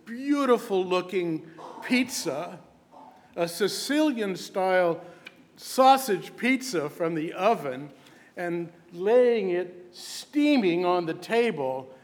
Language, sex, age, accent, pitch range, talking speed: English, male, 60-79, American, 170-220 Hz, 90 wpm